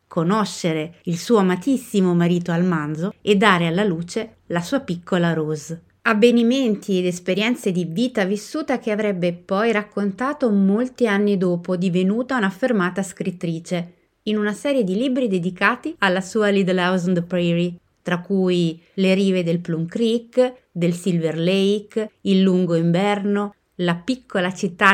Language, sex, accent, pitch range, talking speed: Italian, female, native, 175-220 Hz, 140 wpm